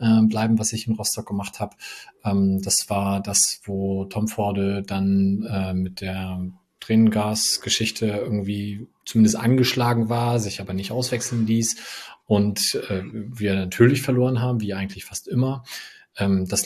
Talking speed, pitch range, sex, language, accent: 130 wpm, 100-110 Hz, male, German, German